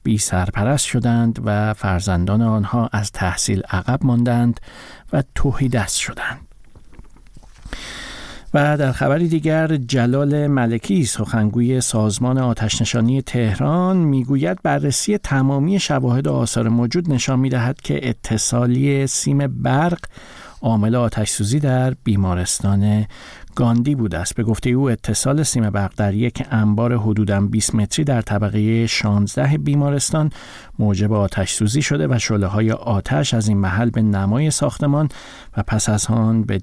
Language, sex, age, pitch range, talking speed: Persian, male, 50-69, 110-135 Hz, 130 wpm